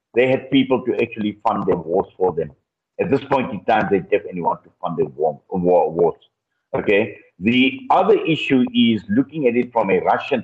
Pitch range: 105-140 Hz